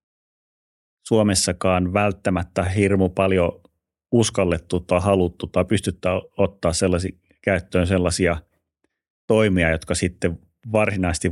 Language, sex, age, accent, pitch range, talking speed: Finnish, male, 30-49, native, 85-100 Hz, 90 wpm